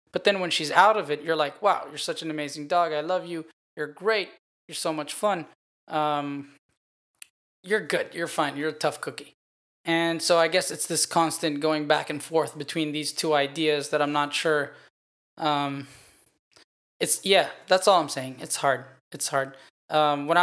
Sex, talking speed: male, 190 wpm